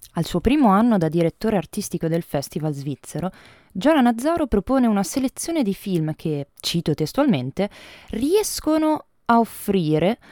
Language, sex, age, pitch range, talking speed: Italian, female, 20-39, 165-255 Hz, 135 wpm